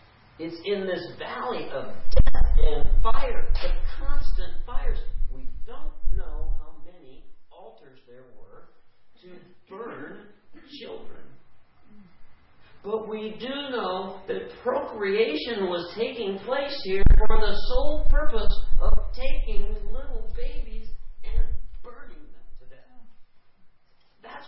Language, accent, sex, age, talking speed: English, American, male, 50-69, 115 wpm